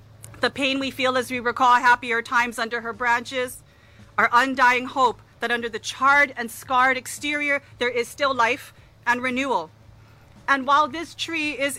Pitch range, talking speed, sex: 230-275 Hz, 170 wpm, female